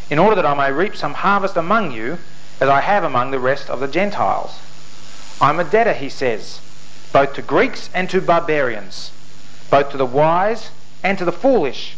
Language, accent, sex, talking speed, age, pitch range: English, Australian, male, 190 wpm, 40-59, 150-205 Hz